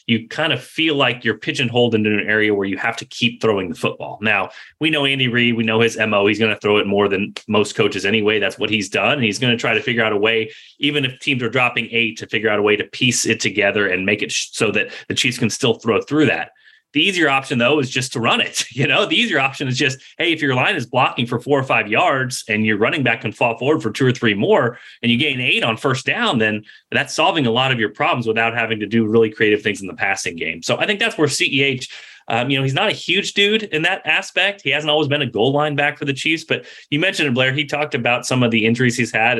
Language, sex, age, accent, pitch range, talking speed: English, male, 30-49, American, 110-145 Hz, 280 wpm